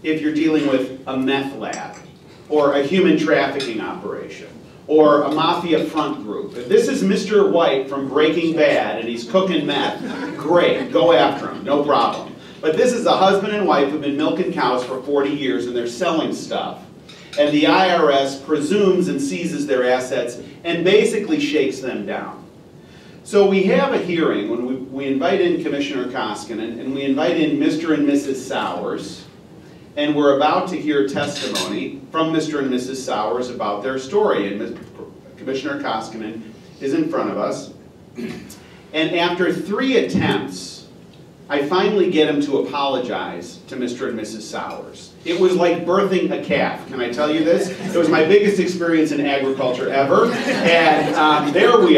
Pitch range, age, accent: 135-180 Hz, 40-59, American